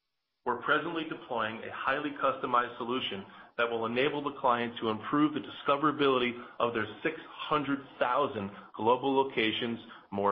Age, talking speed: 30-49, 130 wpm